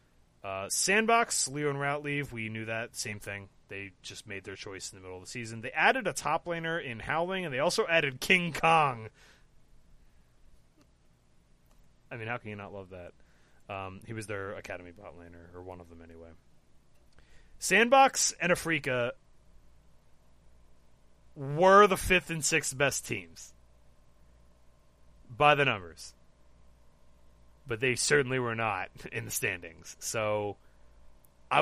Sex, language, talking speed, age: male, English, 150 wpm, 30-49